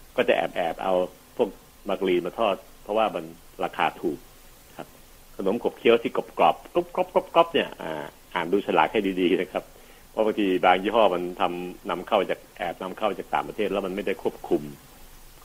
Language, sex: Thai, male